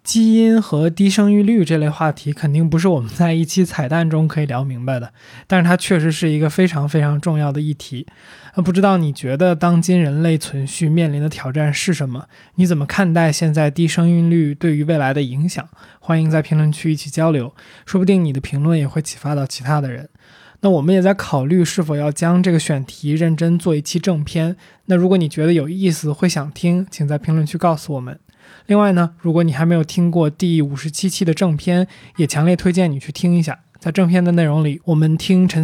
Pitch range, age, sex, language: 150-180 Hz, 20-39, male, Chinese